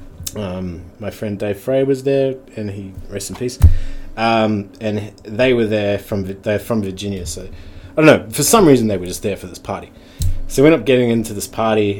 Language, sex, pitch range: English, male, 95-115 Hz